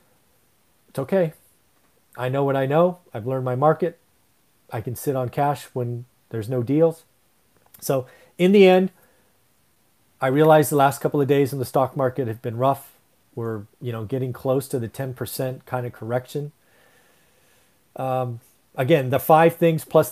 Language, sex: English, male